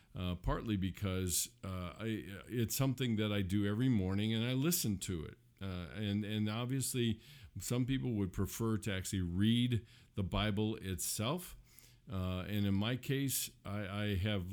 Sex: male